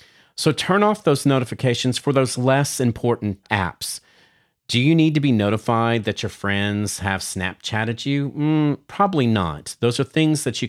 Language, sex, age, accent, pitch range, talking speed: English, male, 40-59, American, 95-125 Hz, 170 wpm